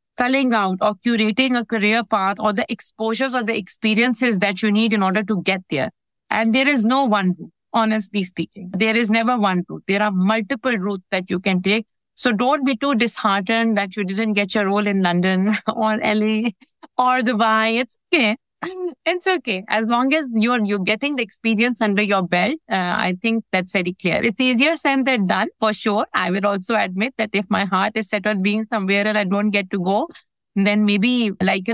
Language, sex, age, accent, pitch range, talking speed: English, female, 60-79, Indian, 200-230 Hz, 210 wpm